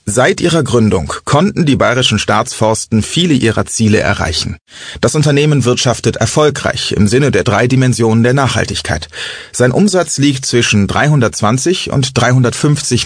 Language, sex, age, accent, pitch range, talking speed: German, male, 30-49, German, 110-135 Hz, 135 wpm